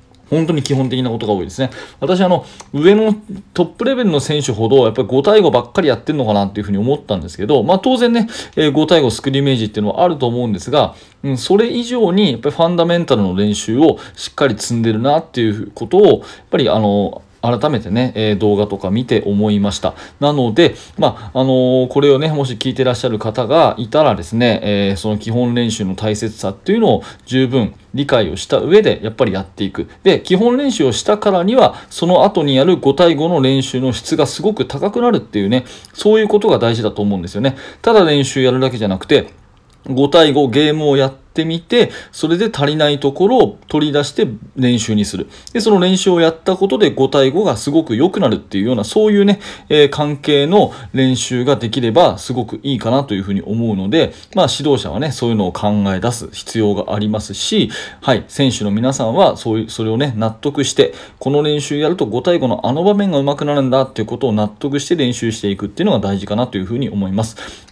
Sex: male